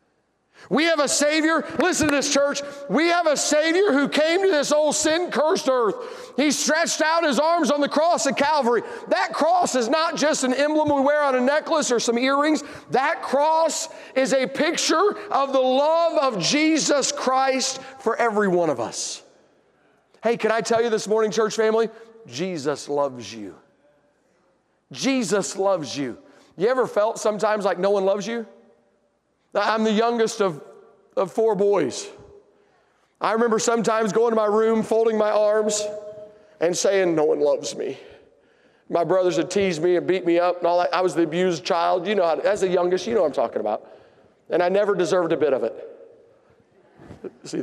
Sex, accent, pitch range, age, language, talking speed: male, American, 205-300 Hz, 40-59, English, 180 wpm